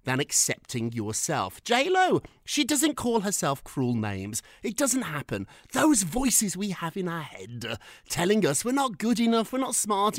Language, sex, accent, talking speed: English, male, British, 175 wpm